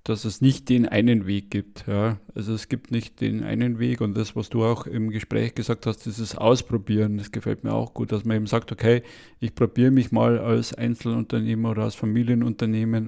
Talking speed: 200 wpm